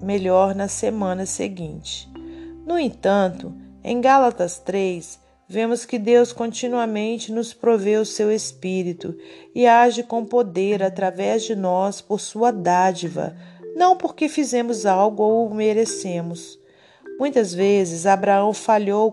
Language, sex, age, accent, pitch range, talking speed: Portuguese, female, 40-59, Brazilian, 180-235 Hz, 120 wpm